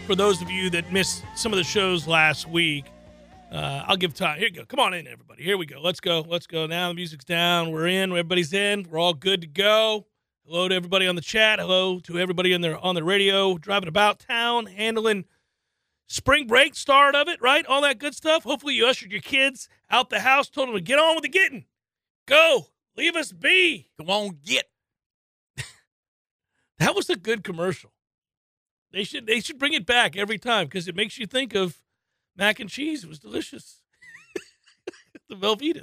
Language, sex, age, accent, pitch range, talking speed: English, male, 40-59, American, 170-230 Hz, 205 wpm